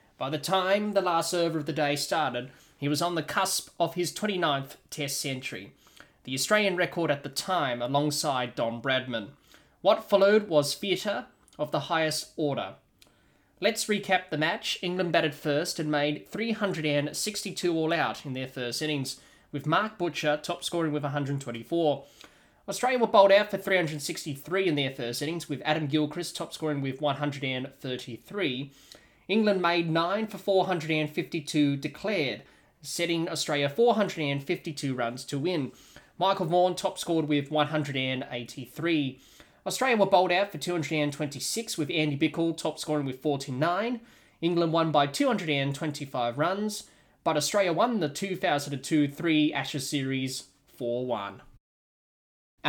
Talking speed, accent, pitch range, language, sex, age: 135 wpm, Australian, 145-185 Hz, English, male, 20-39